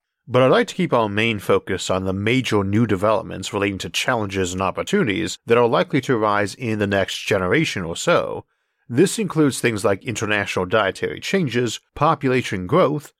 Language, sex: English, male